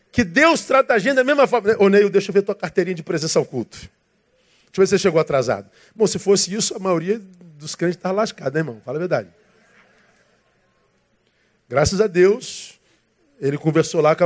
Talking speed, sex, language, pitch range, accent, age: 210 wpm, male, Portuguese, 155-200 Hz, Brazilian, 50-69